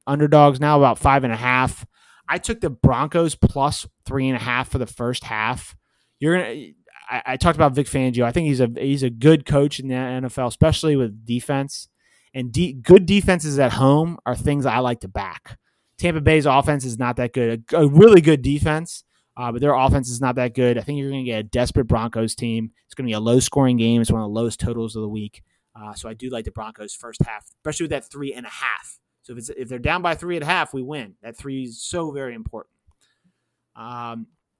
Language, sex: English, male